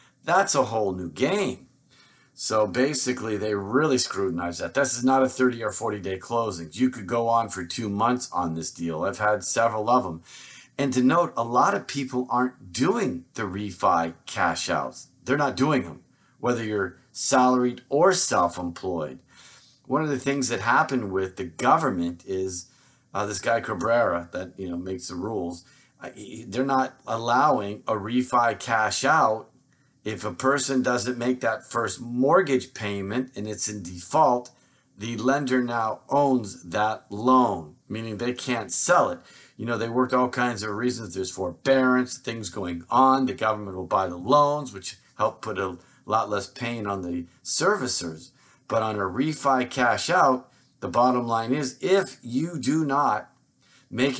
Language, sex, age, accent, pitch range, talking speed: English, male, 40-59, American, 105-130 Hz, 165 wpm